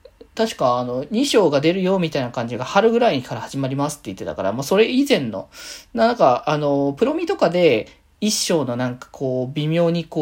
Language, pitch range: Japanese, 145-225 Hz